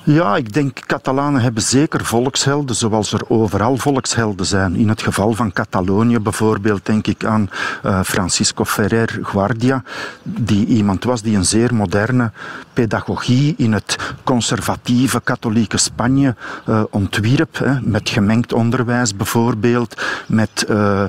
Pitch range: 105-125 Hz